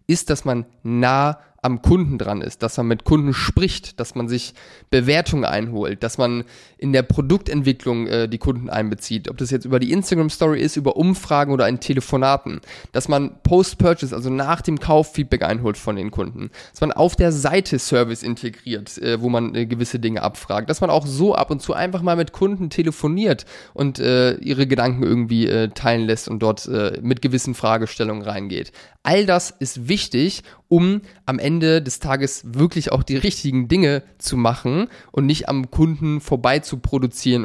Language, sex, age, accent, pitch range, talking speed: German, male, 20-39, German, 120-155 Hz, 180 wpm